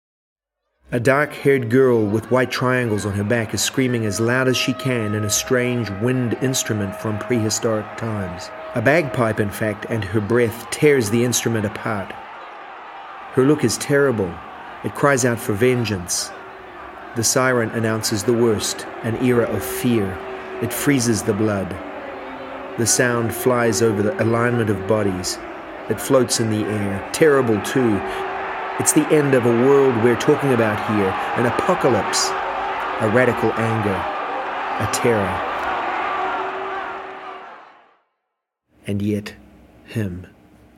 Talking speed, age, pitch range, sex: 135 wpm, 30-49, 105-125 Hz, male